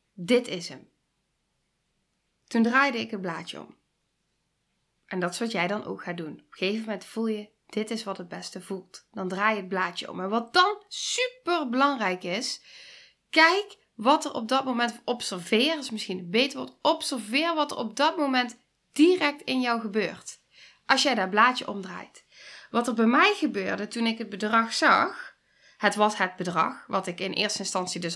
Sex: female